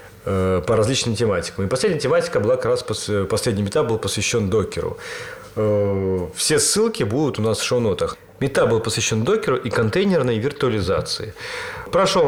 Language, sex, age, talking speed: Russian, male, 30-49, 145 wpm